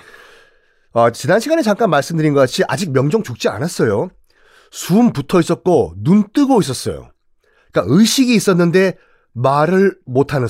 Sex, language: male, Korean